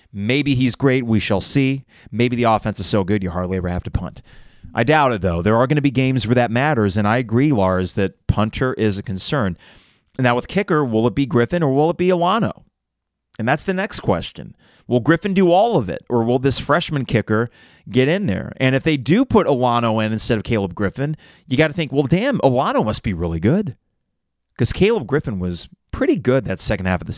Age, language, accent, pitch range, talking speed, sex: 30-49, English, American, 105-150 Hz, 230 wpm, male